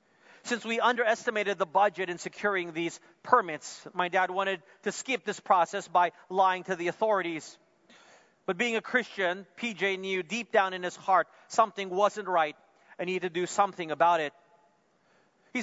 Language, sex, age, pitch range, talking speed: English, male, 40-59, 170-205 Hz, 170 wpm